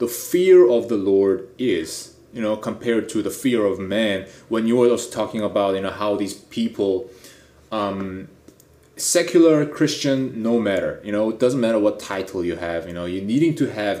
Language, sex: English, male